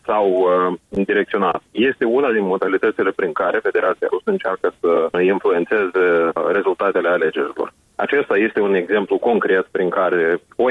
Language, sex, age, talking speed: Romanian, male, 30-49, 135 wpm